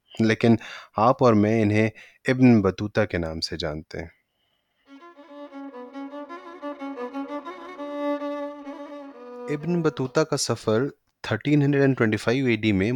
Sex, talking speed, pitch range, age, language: male, 95 wpm, 105-135 Hz, 20-39, Urdu